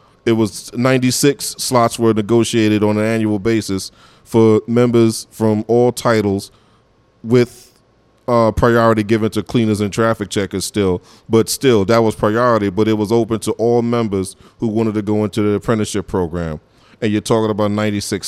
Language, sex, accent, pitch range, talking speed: English, male, American, 110-120 Hz, 165 wpm